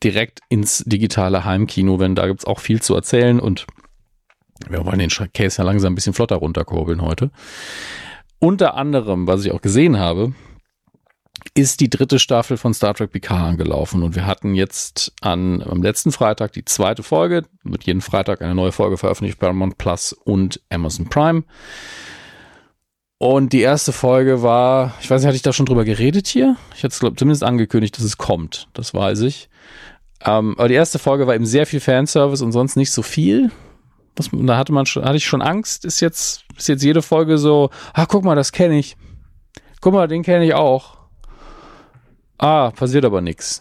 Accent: German